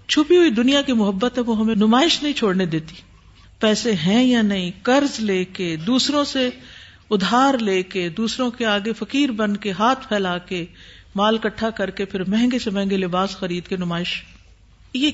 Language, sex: Urdu, female